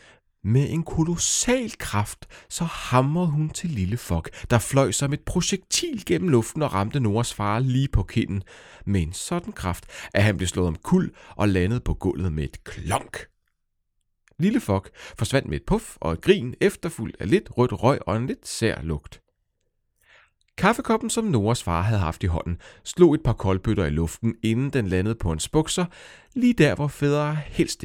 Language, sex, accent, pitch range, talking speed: Danish, male, native, 90-145 Hz, 180 wpm